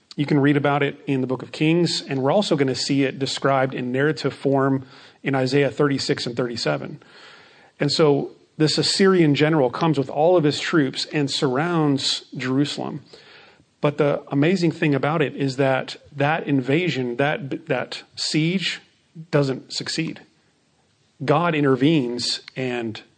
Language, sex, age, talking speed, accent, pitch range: English, male, 40-59, 150 wpm, American, 135-160 Hz